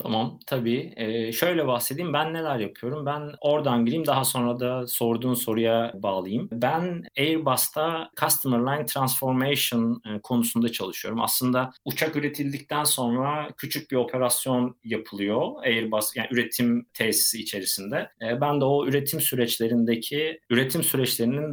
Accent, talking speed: native, 125 wpm